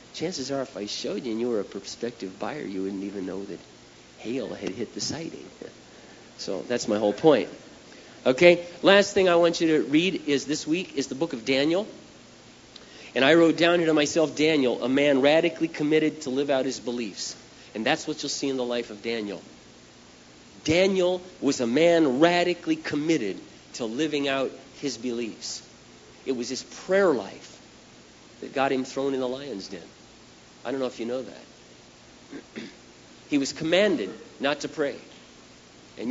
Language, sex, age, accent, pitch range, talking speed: English, male, 40-59, American, 115-155 Hz, 180 wpm